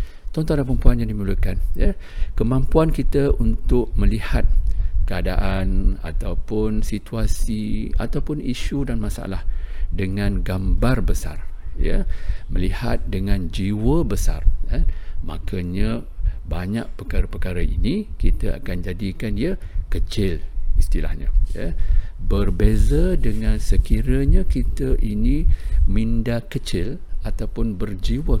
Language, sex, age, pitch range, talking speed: English, male, 50-69, 80-110 Hz, 95 wpm